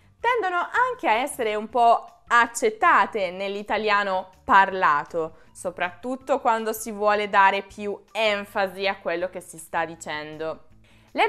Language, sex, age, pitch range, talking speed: Italian, female, 20-39, 180-230 Hz, 120 wpm